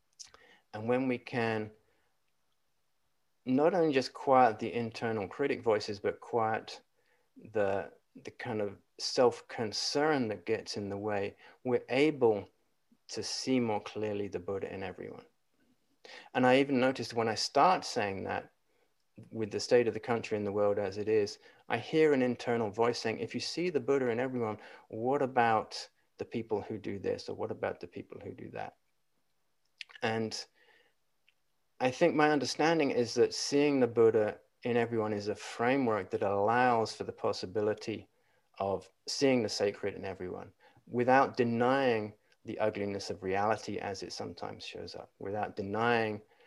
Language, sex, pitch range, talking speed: English, male, 105-130 Hz, 160 wpm